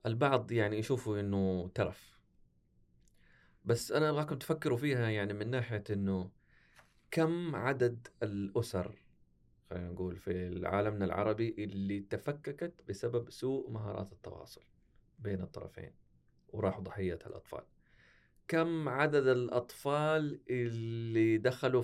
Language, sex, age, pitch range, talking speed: Arabic, male, 30-49, 100-130 Hz, 105 wpm